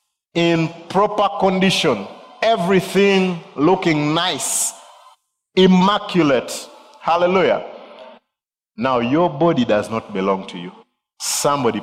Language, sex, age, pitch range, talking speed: English, male, 50-69, 145-205 Hz, 85 wpm